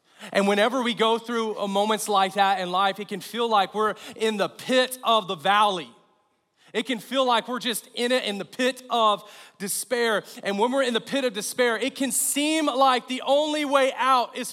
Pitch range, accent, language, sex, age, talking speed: 150-225 Hz, American, English, male, 40-59, 215 wpm